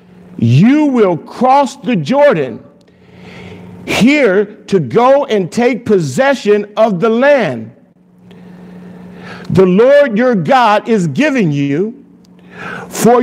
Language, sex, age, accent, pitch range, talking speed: English, male, 50-69, American, 155-230 Hz, 100 wpm